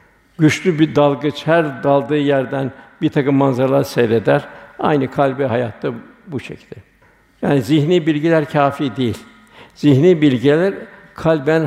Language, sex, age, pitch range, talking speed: Turkish, male, 60-79, 130-155 Hz, 115 wpm